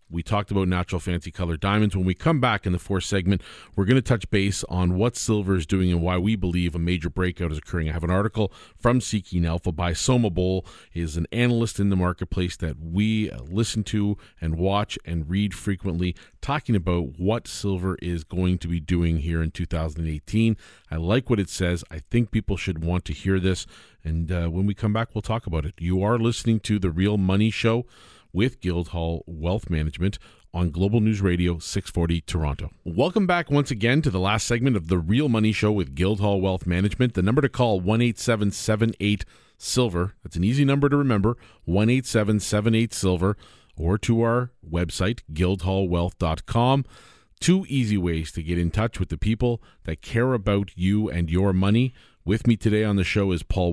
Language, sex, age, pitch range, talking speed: English, male, 40-59, 85-115 Hz, 195 wpm